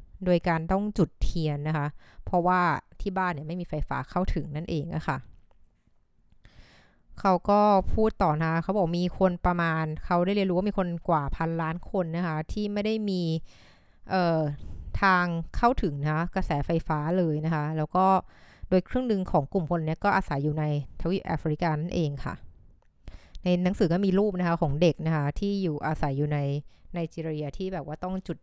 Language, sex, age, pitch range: Thai, female, 20-39, 150-185 Hz